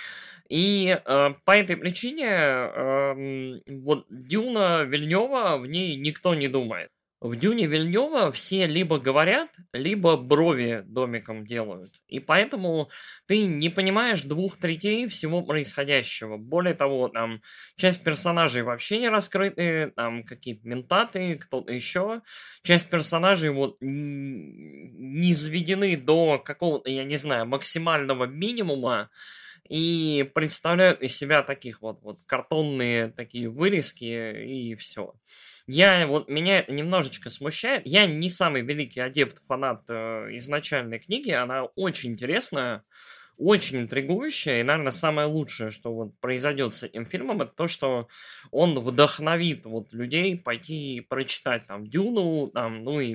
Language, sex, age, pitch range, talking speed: Russian, male, 20-39, 125-180 Hz, 120 wpm